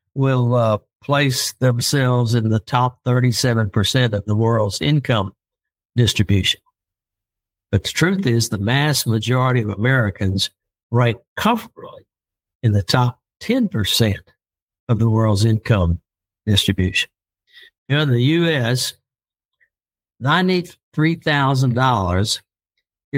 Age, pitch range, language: 60-79, 110-130 Hz, English